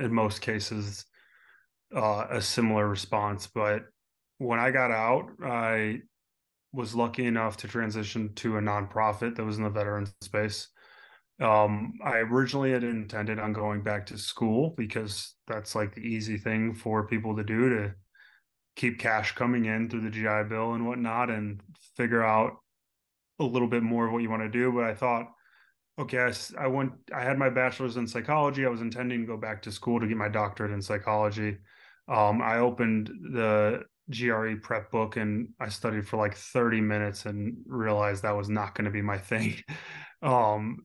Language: English